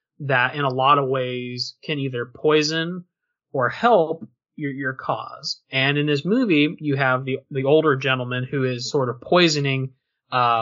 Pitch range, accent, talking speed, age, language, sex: 125-160 Hz, American, 170 wpm, 20-39, English, male